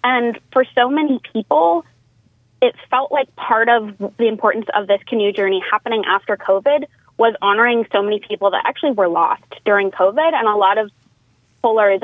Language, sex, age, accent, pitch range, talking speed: English, female, 20-39, American, 185-225 Hz, 175 wpm